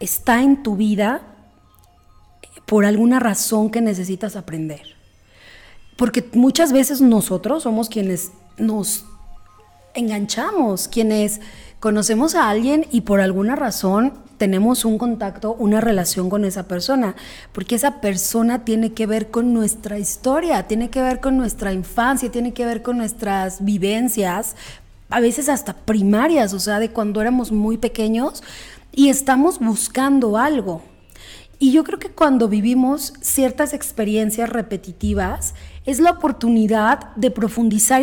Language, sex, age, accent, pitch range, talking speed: Spanish, female, 30-49, Mexican, 205-260 Hz, 135 wpm